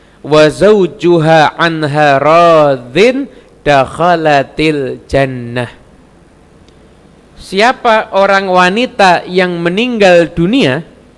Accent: native